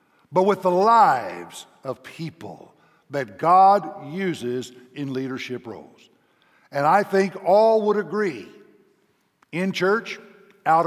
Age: 60-79